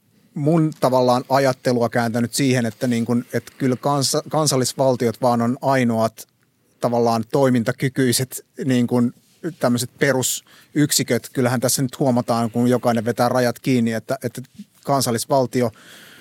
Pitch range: 120-135 Hz